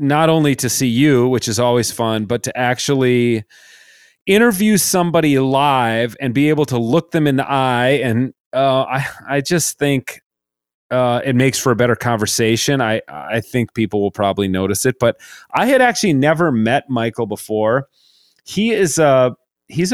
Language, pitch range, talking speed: English, 115-140 Hz, 170 wpm